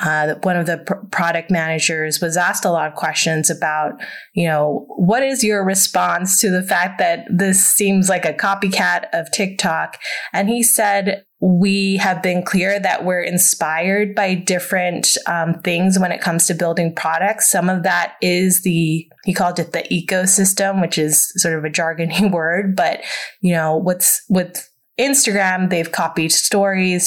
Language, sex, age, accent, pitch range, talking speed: English, female, 20-39, American, 170-205 Hz, 170 wpm